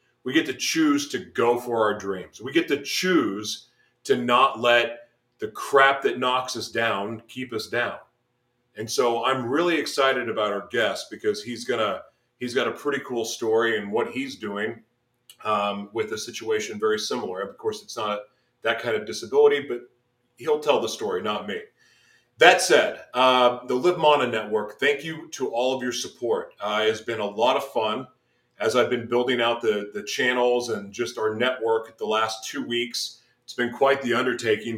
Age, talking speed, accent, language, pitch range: 30-49, 195 wpm, American, English, 115-135 Hz